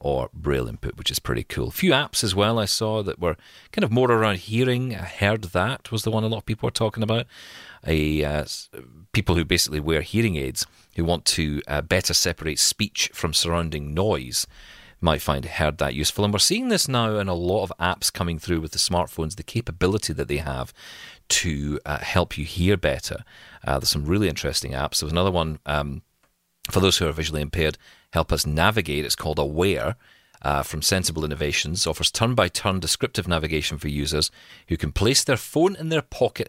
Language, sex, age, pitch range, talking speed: English, male, 40-59, 75-105 Hz, 205 wpm